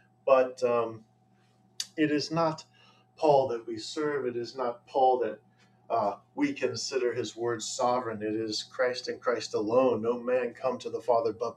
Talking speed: 170 wpm